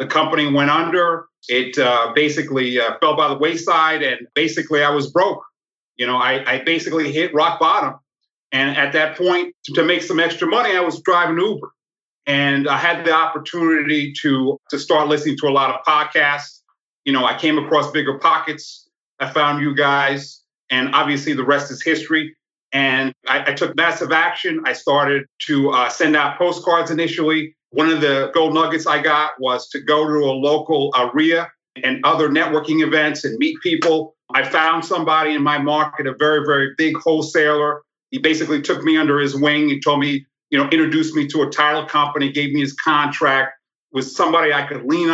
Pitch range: 145-165 Hz